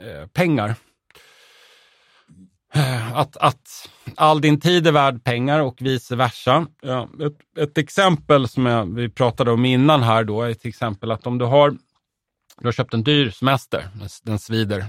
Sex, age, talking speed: male, 30-49, 155 wpm